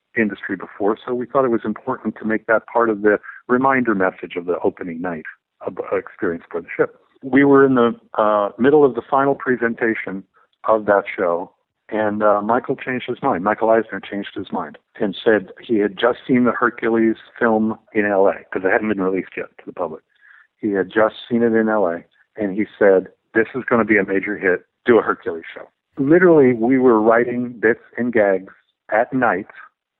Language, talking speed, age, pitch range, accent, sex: English, 200 wpm, 50-69, 105-125 Hz, American, male